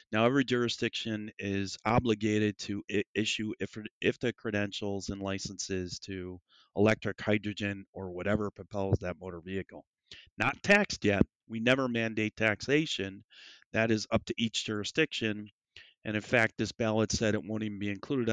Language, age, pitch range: English, 30-49, 100-115 Hz